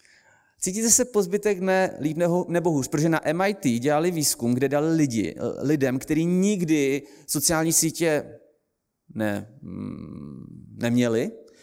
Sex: male